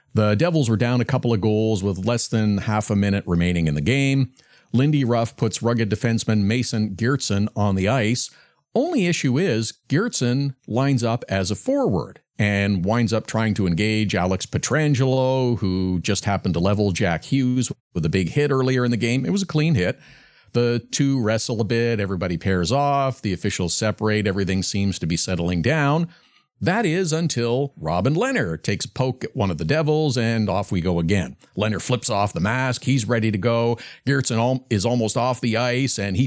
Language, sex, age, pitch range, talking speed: English, male, 50-69, 105-135 Hz, 195 wpm